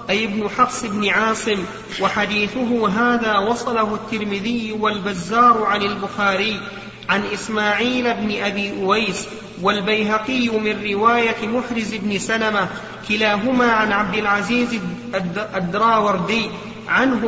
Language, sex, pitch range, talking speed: Arabic, male, 205-230 Hz, 100 wpm